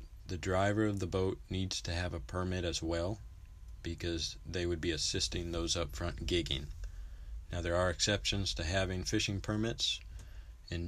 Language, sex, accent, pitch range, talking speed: English, male, American, 80-100 Hz, 165 wpm